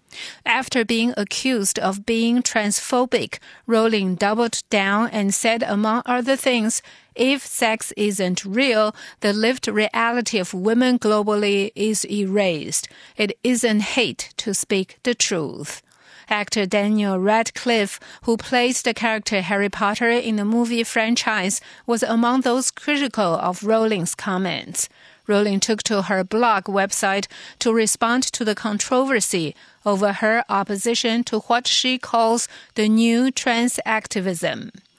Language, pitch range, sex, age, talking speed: English, 200-235 Hz, female, 50-69, 125 wpm